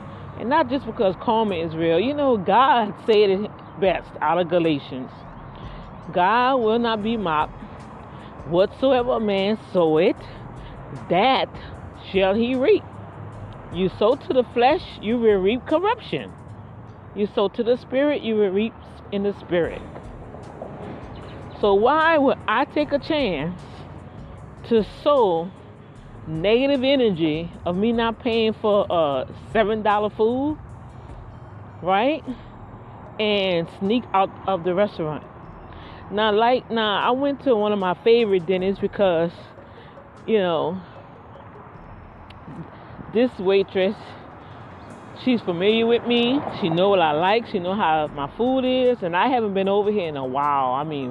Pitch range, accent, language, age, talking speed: 160-230 Hz, American, English, 40-59, 140 wpm